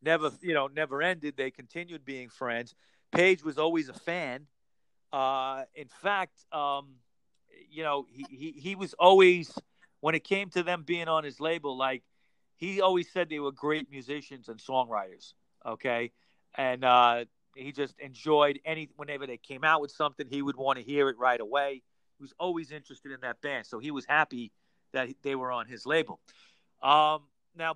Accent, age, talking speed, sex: American, 40-59, 180 wpm, male